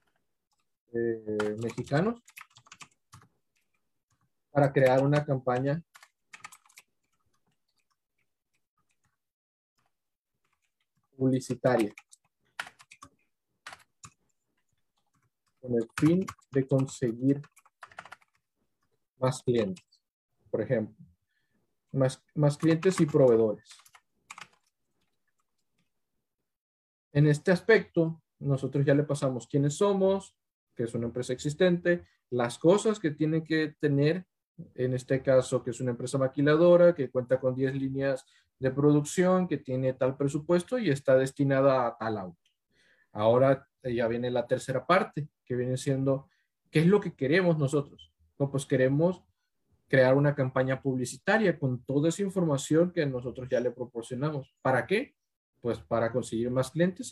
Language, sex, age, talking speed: Spanish, male, 40-59, 110 wpm